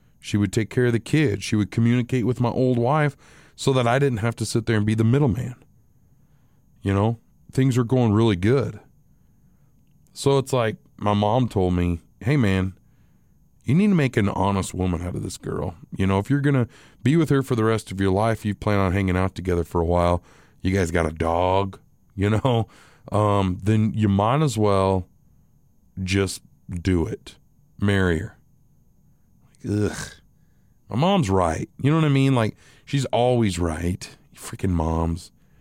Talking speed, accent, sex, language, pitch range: 185 wpm, American, male, English, 100-135 Hz